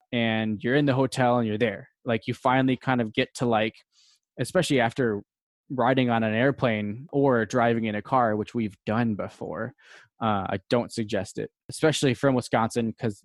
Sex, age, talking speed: male, 20-39, 180 wpm